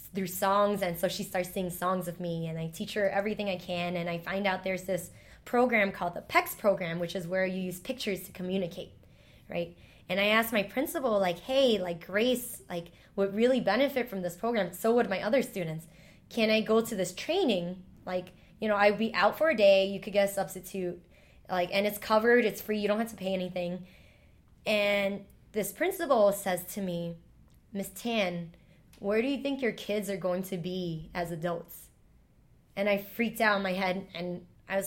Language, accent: English, American